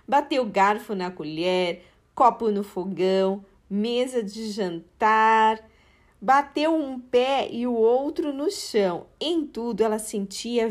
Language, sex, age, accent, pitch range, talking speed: Portuguese, female, 40-59, Brazilian, 190-255 Hz, 125 wpm